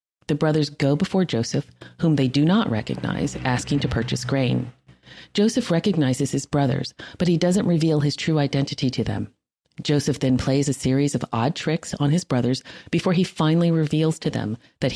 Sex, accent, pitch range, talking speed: female, American, 125-160 Hz, 180 wpm